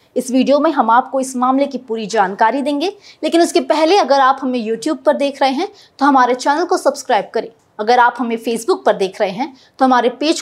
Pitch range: 220-295 Hz